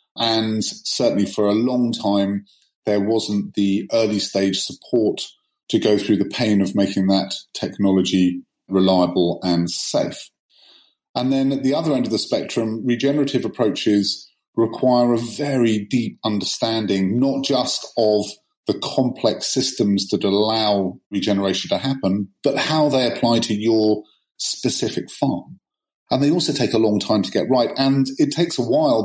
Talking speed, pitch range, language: 155 wpm, 100-130 Hz, English